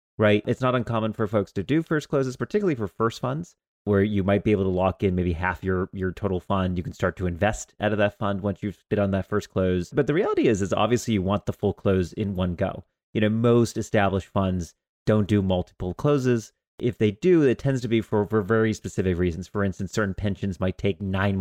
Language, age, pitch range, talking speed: English, 30-49, 95-115 Hz, 240 wpm